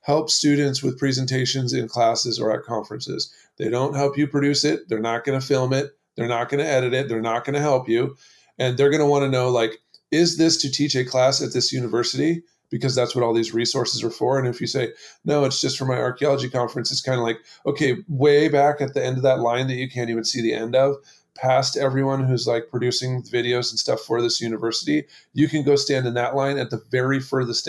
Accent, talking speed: American, 245 wpm